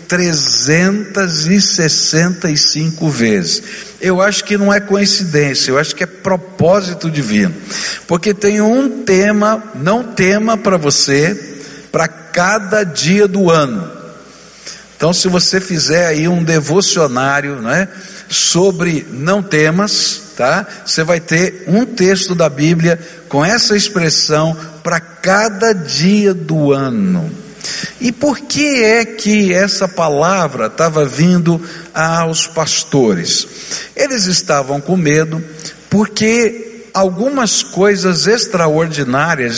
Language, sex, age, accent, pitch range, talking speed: Portuguese, male, 60-79, Brazilian, 155-200 Hz, 110 wpm